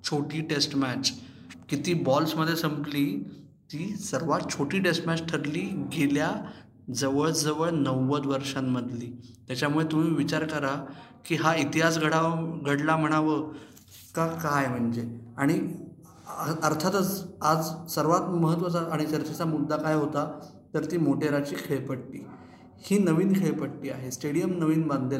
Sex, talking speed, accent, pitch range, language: male, 100 wpm, native, 145-170 Hz, Marathi